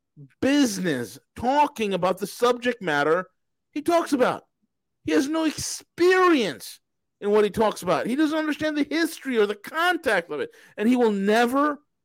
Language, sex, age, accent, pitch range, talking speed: English, male, 40-59, American, 165-245 Hz, 160 wpm